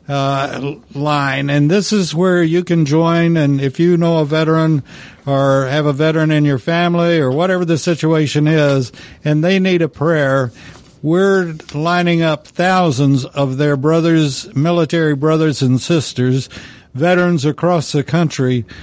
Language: English